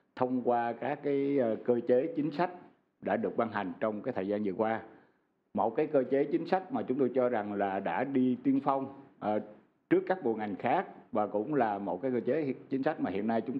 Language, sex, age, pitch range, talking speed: Vietnamese, male, 60-79, 105-135 Hz, 230 wpm